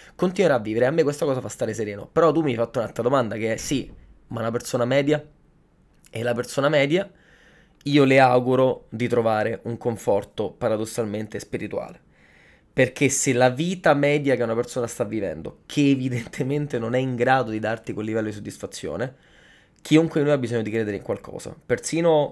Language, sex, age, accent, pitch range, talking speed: Italian, male, 20-39, native, 115-145 Hz, 185 wpm